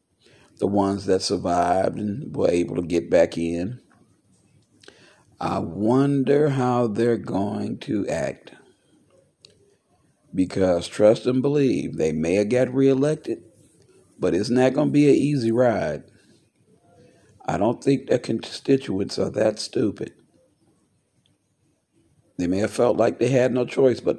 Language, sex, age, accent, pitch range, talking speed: English, male, 40-59, American, 105-135 Hz, 135 wpm